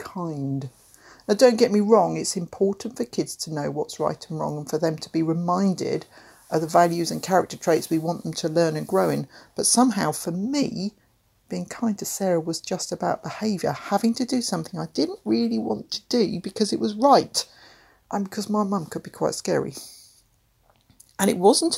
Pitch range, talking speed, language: 160-205 Hz, 200 wpm, English